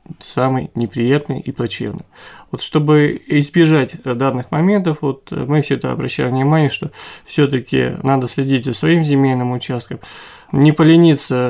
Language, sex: Russian, male